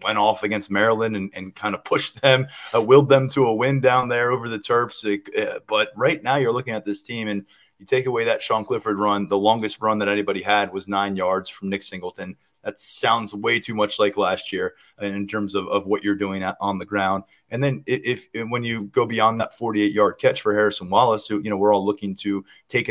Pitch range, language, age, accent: 100-120 Hz, English, 30-49, American